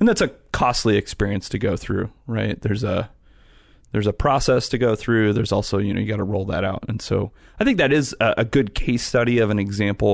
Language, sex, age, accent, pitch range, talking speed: English, male, 30-49, American, 100-120 Hz, 235 wpm